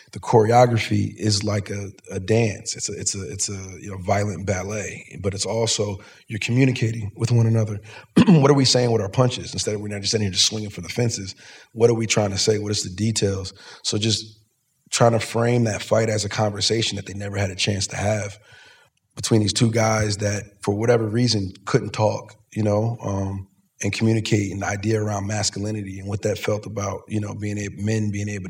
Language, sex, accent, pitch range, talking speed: English, male, American, 100-115 Hz, 215 wpm